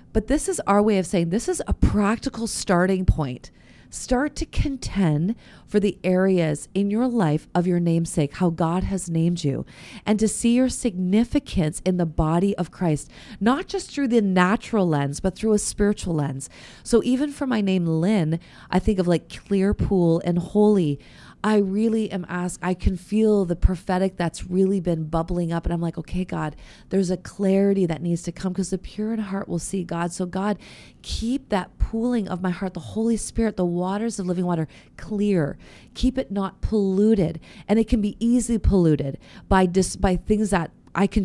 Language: English